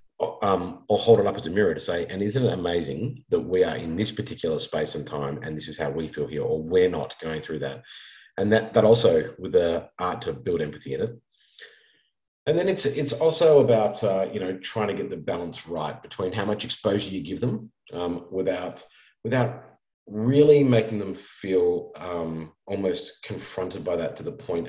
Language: English